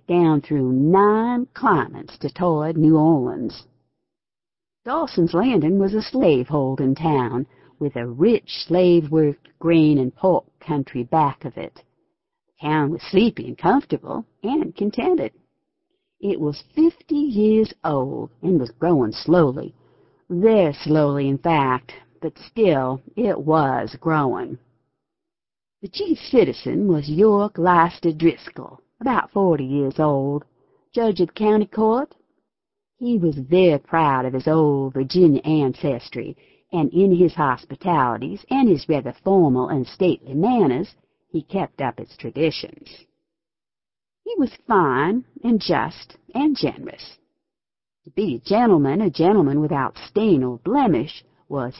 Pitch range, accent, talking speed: 145-215 Hz, American, 125 wpm